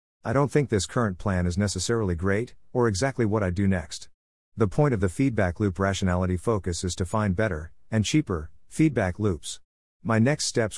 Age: 50-69